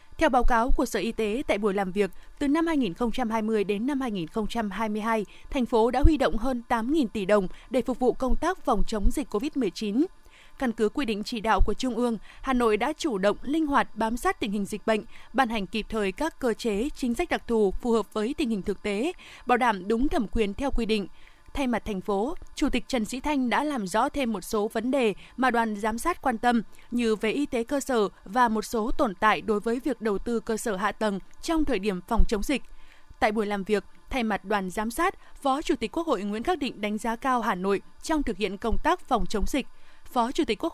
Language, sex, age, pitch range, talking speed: Vietnamese, female, 20-39, 215-265 Hz, 245 wpm